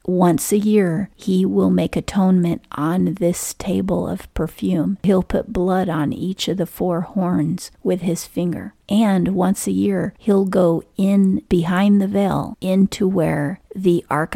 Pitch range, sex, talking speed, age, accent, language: 160-185 Hz, female, 160 wpm, 40-59, American, English